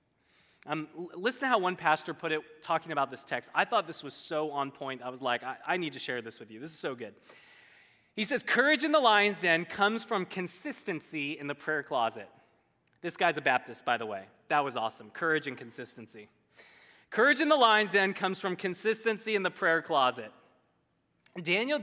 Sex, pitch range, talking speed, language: male, 130-195 Hz, 205 wpm, English